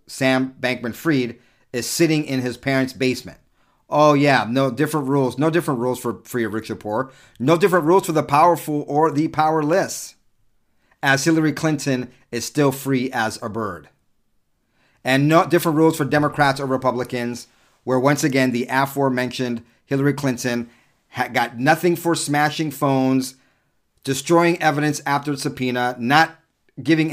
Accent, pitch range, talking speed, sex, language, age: American, 115-145 Hz, 150 wpm, male, English, 40-59